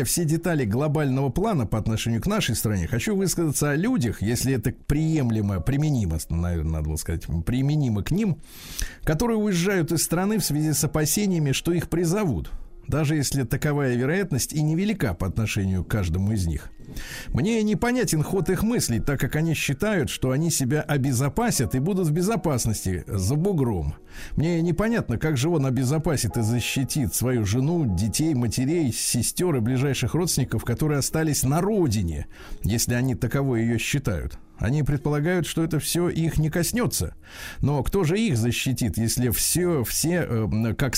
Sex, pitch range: male, 115-160 Hz